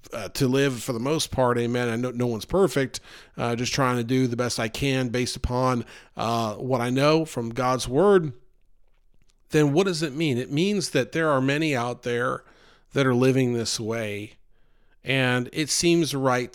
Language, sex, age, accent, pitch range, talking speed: English, male, 40-59, American, 120-150 Hz, 190 wpm